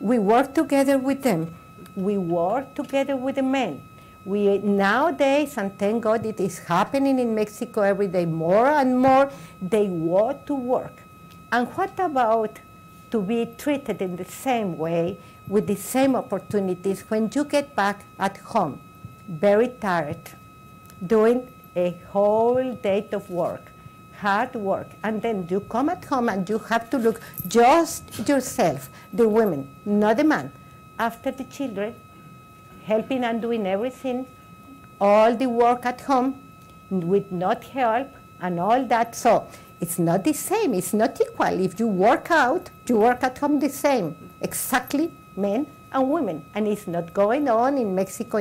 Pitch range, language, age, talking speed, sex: 190-260 Hz, English, 50-69, 155 wpm, female